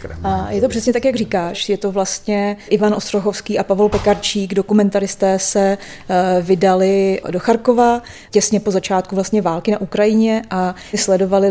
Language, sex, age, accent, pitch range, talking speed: Czech, female, 30-49, native, 195-225 Hz, 145 wpm